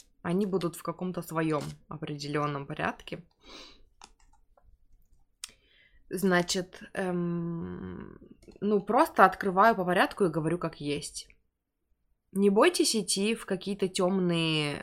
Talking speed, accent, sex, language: 95 wpm, native, female, Russian